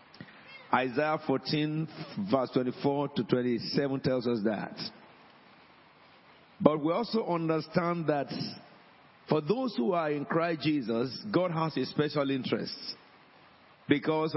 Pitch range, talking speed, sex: 140-175 Hz, 115 wpm, male